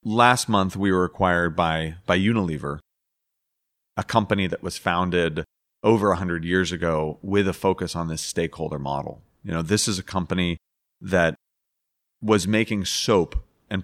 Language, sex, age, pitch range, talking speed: English, male, 30-49, 85-100 Hz, 155 wpm